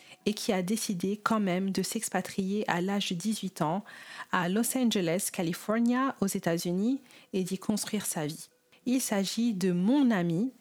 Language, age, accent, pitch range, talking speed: French, 40-59, French, 180-220 Hz, 170 wpm